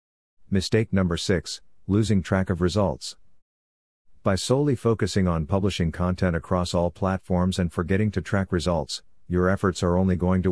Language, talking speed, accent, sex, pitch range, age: English, 155 wpm, American, male, 85-100 Hz, 50-69